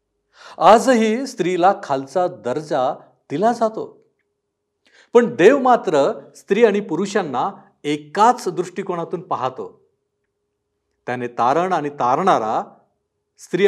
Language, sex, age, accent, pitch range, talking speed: Marathi, male, 50-69, native, 120-185 Hz, 90 wpm